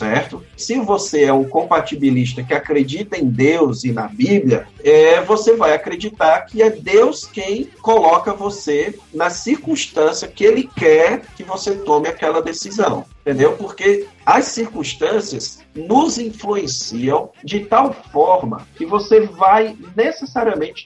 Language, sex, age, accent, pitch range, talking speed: Portuguese, male, 40-59, Brazilian, 145-220 Hz, 125 wpm